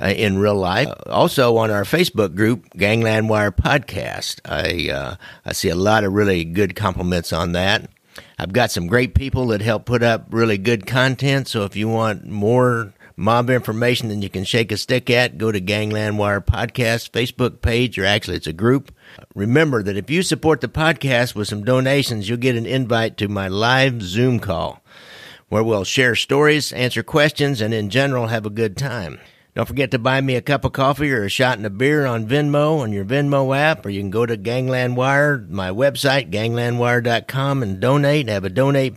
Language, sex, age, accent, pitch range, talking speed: English, male, 50-69, American, 100-130 Hz, 205 wpm